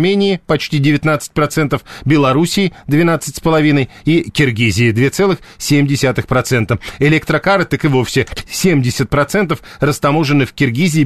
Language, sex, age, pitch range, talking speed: Russian, male, 40-59, 130-165 Hz, 85 wpm